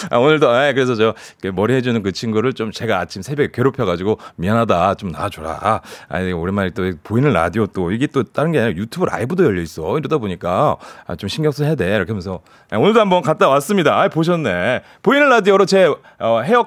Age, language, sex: 30-49, Korean, male